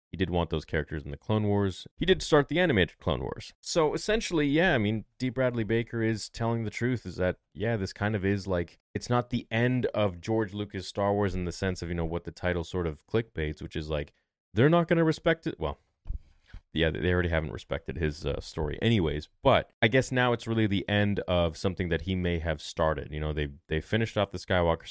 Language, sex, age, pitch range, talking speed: English, male, 30-49, 80-110 Hz, 240 wpm